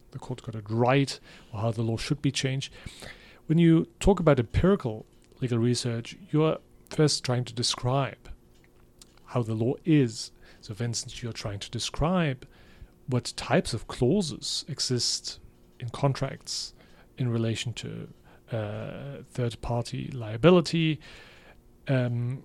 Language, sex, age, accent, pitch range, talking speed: English, male, 40-59, German, 115-140 Hz, 135 wpm